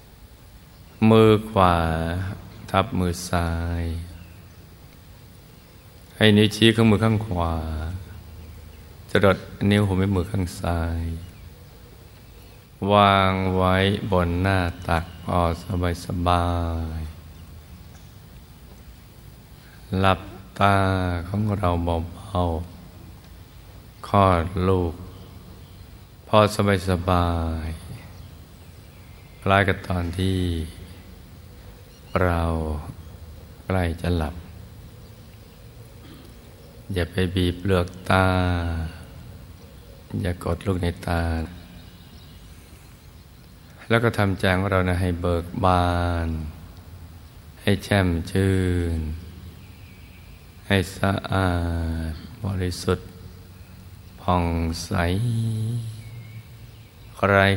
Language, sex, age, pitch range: Thai, male, 20-39, 85-95 Hz